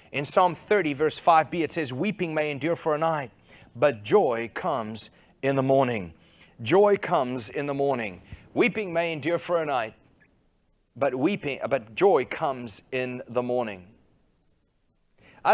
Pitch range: 130-170 Hz